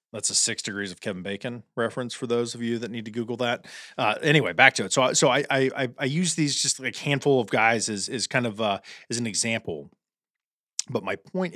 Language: English